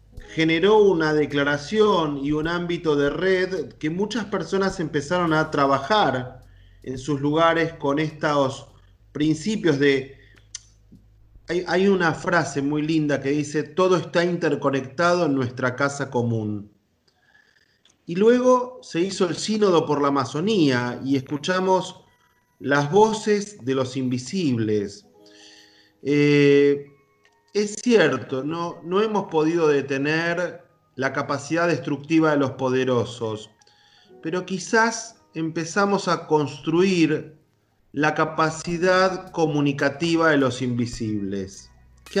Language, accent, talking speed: Spanish, Argentinian, 110 wpm